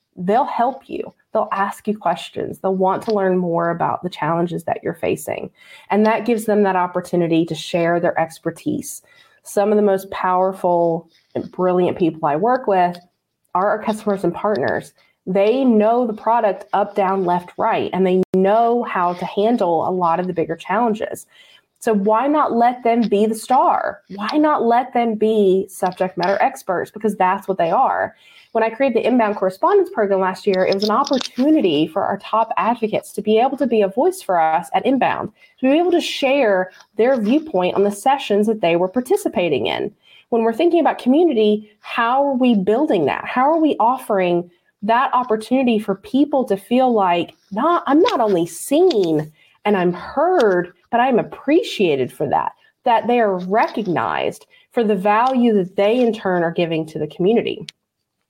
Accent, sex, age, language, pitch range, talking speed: American, female, 20-39, English, 180-240 Hz, 180 wpm